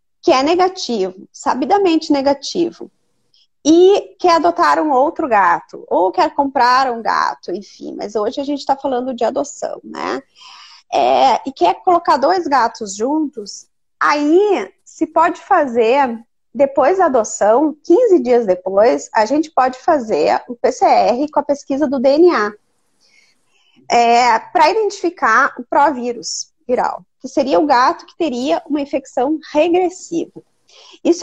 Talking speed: 130 wpm